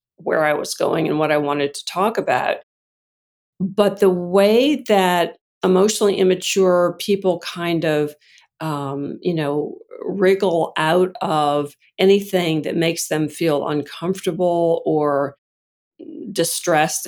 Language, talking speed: English, 120 wpm